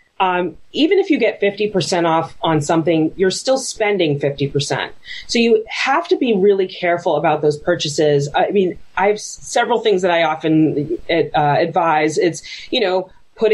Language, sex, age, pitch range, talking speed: English, female, 30-49, 150-185 Hz, 170 wpm